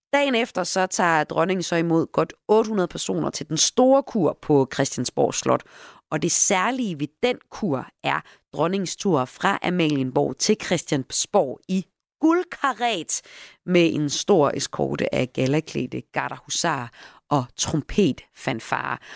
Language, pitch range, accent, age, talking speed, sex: Danish, 150-235 Hz, native, 30-49, 125 wpm, female